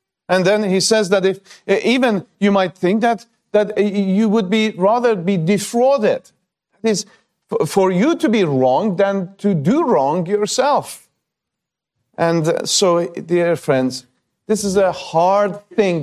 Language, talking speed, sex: English, 140 wpm, male